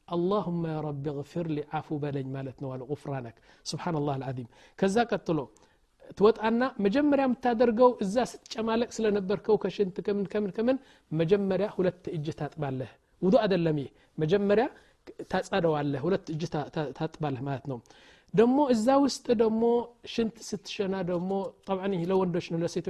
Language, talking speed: Amharic, 135 wpm